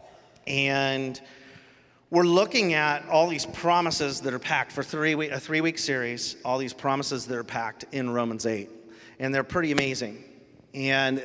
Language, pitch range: English, 135-155 Hz